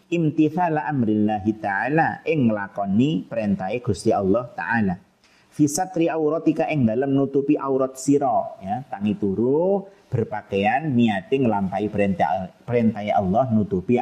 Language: Indonesian